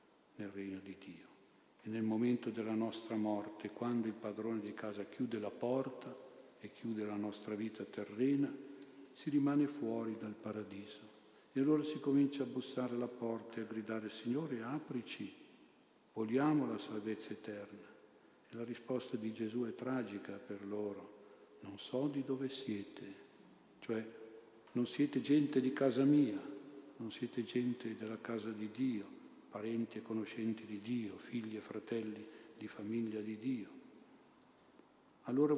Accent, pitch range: native, 105-130 Hz